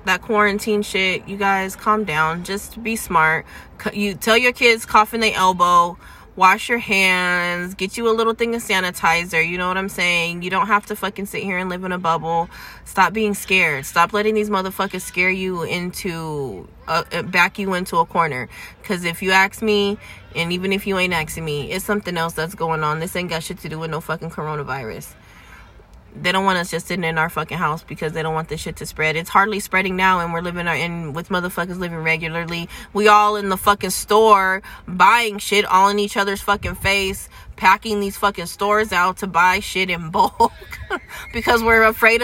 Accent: American